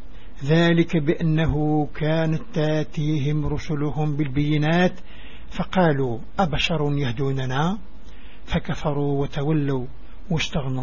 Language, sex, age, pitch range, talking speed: Arabic, male, 60-79, 135-165 Hz, 65 wpm